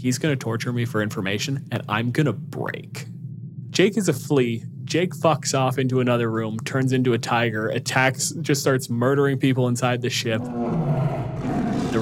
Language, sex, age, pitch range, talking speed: English, male, 20-39, 110-130 Hz, 175 wpm